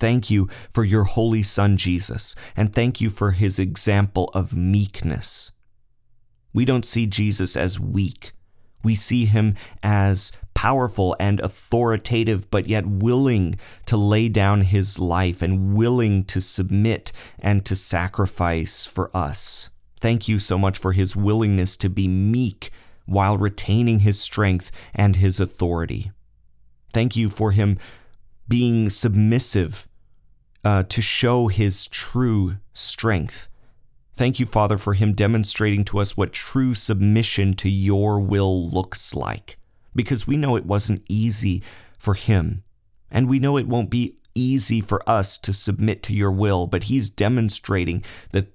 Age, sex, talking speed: 30-49, male, 145 wpm